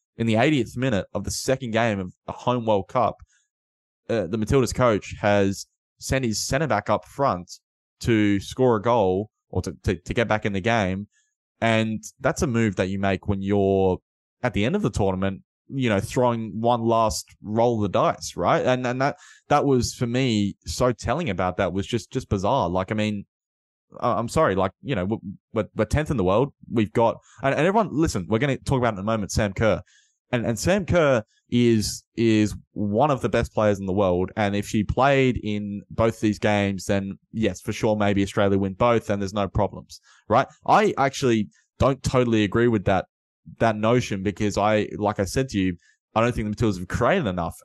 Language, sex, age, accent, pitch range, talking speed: English, male, 20-39, Australian, 100-120 Hz, 210 wpm